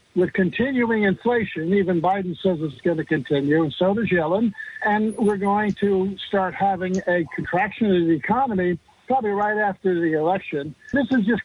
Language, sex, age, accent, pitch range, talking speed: English, male, 60-79, American, 185-230 Hz, 175 wpm